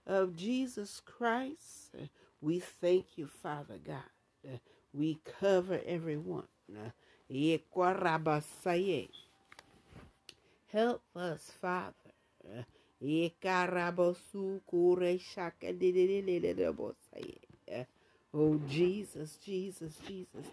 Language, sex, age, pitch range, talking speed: English, female, 60-79, 155-185 Hz, 55 wpm